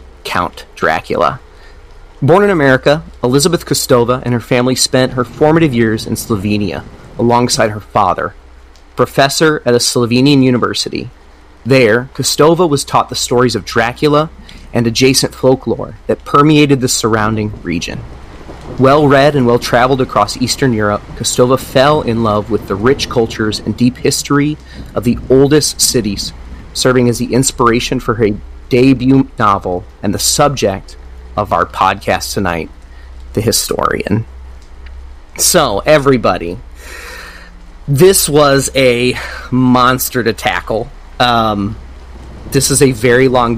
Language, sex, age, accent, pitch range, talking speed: English, male, 30-49, American, 110-135 Hz, 125 wpm